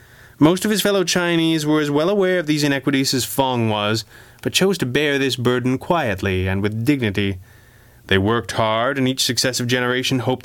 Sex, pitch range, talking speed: male, 110-150 Hz, 190 wpm